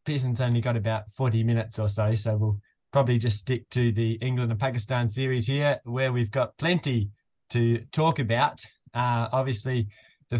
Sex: male